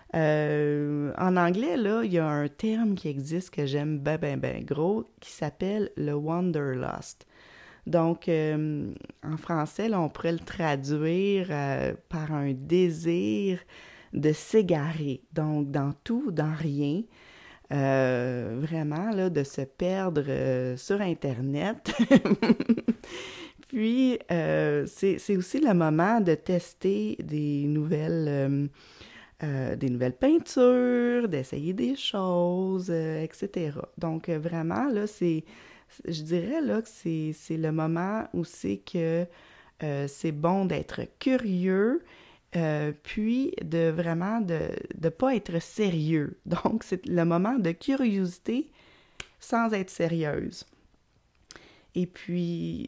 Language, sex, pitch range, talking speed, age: French, female, 150-200 Hz, 125 wpm, 30-49